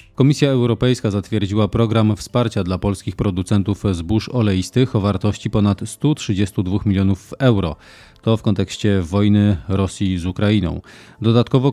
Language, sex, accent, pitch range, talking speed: Polish, male, native, 95-115 Hz, 125 wpm